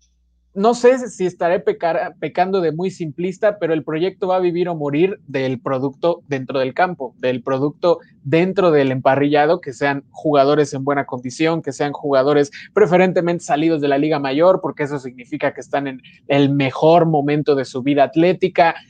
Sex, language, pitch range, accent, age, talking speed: male, Spanish, 145-185 Hz, Mexican, 20-39, 170 wpm